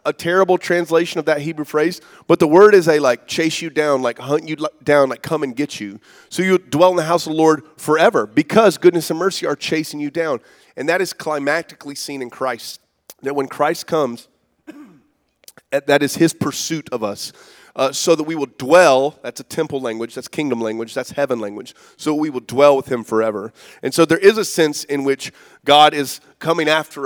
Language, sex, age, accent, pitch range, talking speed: English, male, 30-49, American, 130-160 Hz, 210 wpm